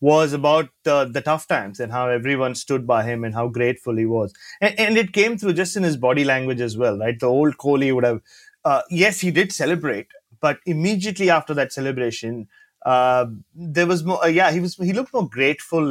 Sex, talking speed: male, 215 wpm